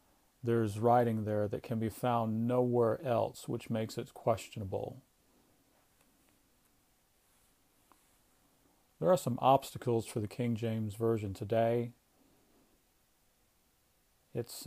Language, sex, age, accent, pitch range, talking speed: English, male, 40-59, American, 110-125 Hz, 100 wpm